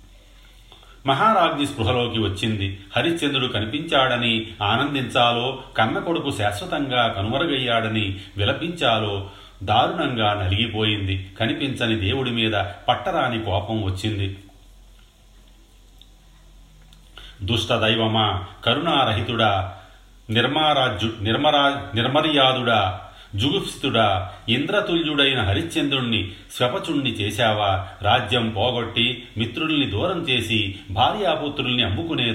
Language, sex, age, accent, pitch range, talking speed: Telugu, male, 40-59, native, 105-130 Hz, 65 wpm